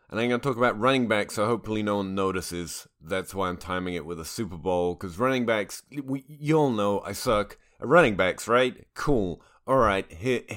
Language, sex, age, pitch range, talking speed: English, male, 30-49, 95-130 Hz, 220 wpm